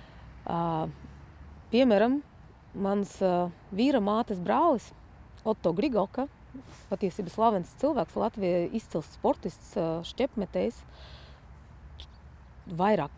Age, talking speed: 30-49, 85 wpm